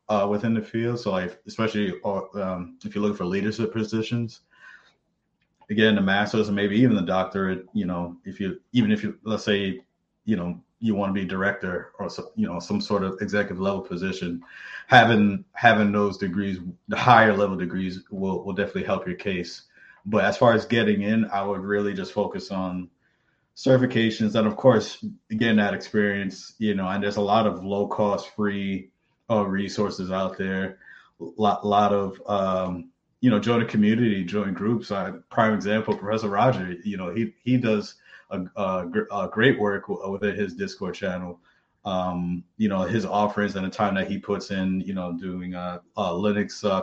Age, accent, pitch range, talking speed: 30-49, American, 95-110 Hz, 185 wpm